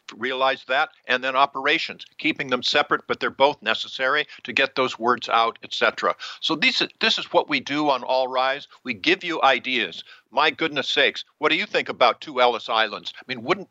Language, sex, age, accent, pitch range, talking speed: English, male, 60-79, American, 125-160 Hz, 205 wpm